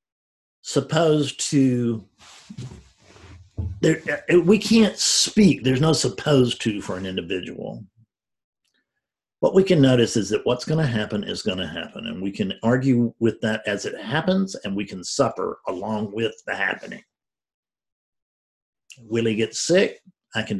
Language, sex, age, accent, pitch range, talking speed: English, male, 50-69, American, 100-140 Hz, 145 wpm